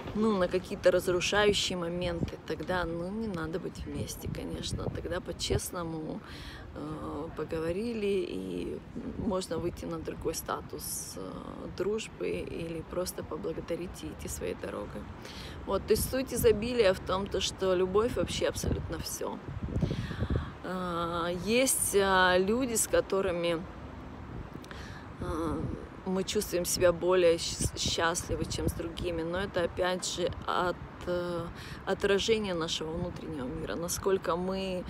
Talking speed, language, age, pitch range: 115 wpm, Russian, 20-39, 170-195 Hz